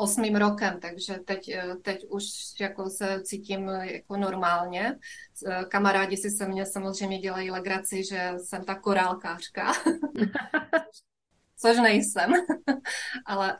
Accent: native